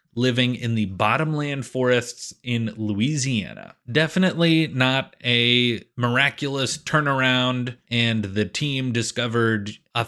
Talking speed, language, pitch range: 100 wpm, English, 115-140 Hz